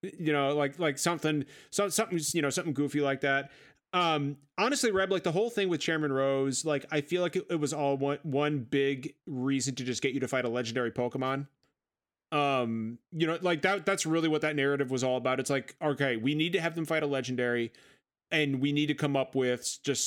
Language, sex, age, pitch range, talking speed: English, male, 30-49, 125-155 Hz, 225 wpm